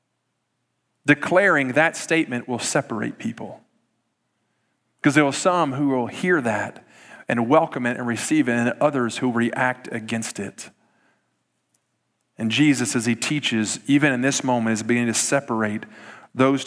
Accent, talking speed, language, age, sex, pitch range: American, 145 wpm, English, 40-59, male, 125-180 Hz